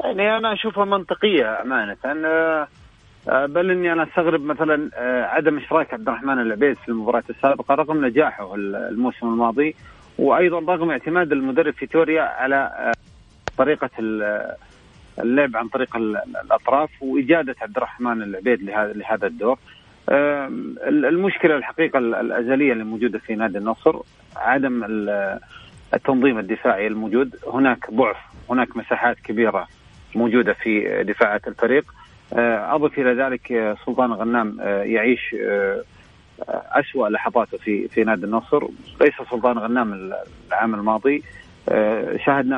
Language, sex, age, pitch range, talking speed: Arabic, male, 40-59, 110-150 Hz, 110 wpm